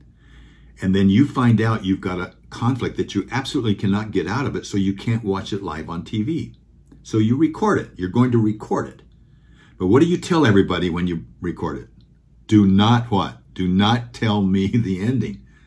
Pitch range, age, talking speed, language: 90-115 Hz, 50-69, 205 wpm, English